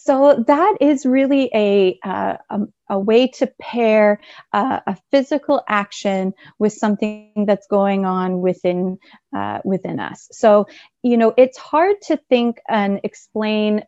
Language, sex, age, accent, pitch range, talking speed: English, female, 30-49, American, 195-230 Hz, 145 wpm